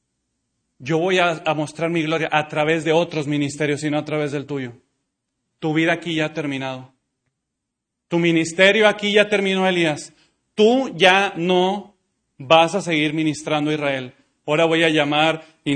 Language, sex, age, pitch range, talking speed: Spanish, male, 30-49, 150-190 Hz, 165 wpm